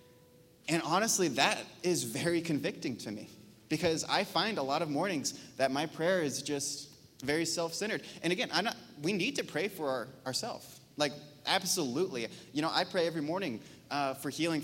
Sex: male